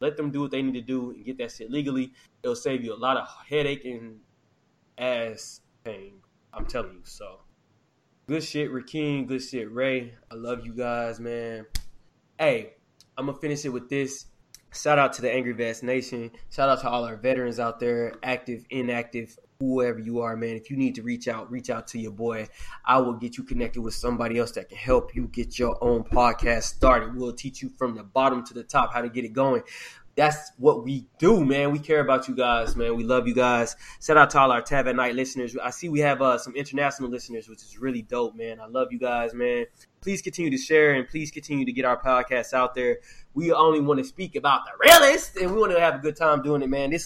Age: 20-39